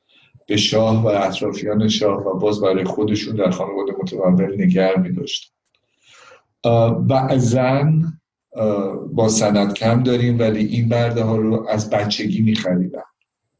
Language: Persian